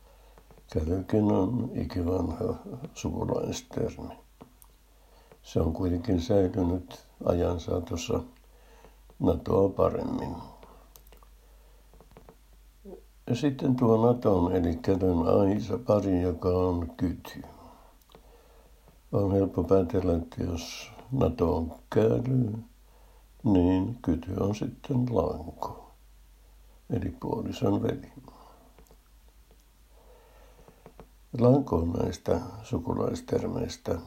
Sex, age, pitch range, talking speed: male, 60-79, 85-105 Hz, 75 wpm